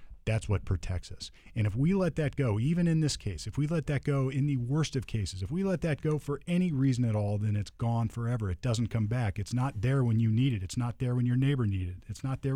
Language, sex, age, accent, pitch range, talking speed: English, male, 40-59, American, 100-145 Hz, 285 wpm